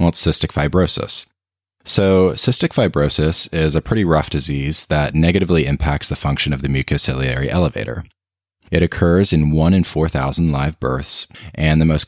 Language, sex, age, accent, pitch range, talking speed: English, male, 20-39, American, 75-95 Hz, 160 wpm